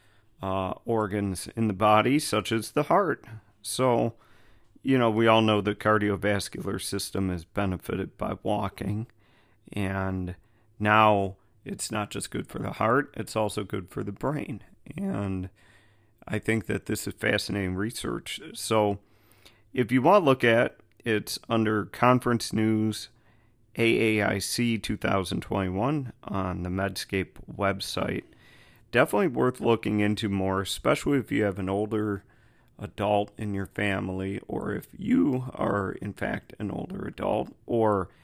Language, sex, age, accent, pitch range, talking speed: English, male, 40-59, American, 100-110 Hz, 135 wpm